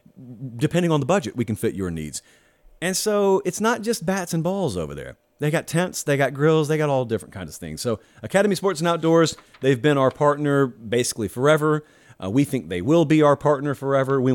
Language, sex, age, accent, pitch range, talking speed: English, male, 40-59, American, 115-175 Hz, 220 wpm